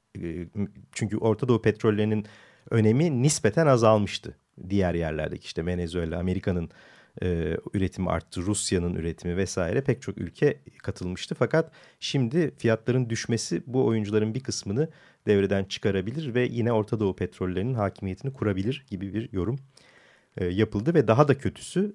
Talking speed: 125 wpm